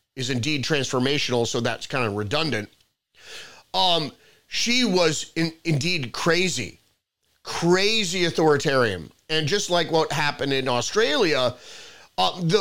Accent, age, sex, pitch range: American, 30-49, male, 130-175 Hz